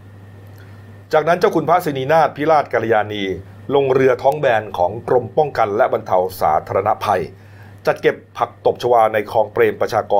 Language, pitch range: Thai, 100-145 Hz